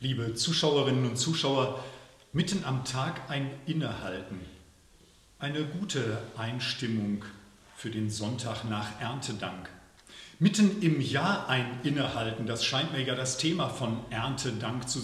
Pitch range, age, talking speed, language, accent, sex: 110-150 Hz, 40-59, 125 wpm, German, German, male